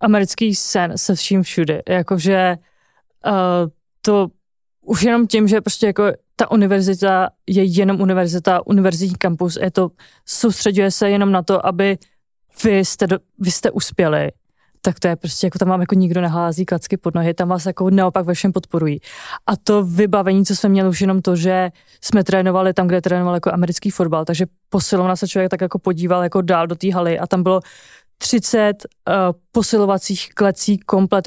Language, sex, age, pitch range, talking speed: Czech, female, 20-39, 180-200 Hz, 180 wpm